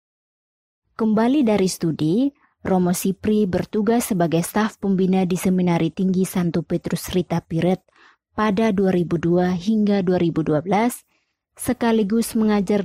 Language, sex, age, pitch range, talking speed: Indonesian, female, 20-39, 175-205 Hz, 105 wpm